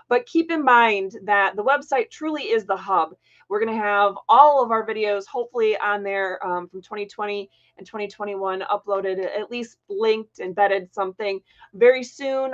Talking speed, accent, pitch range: 165 wpm, American, 205-270 Hz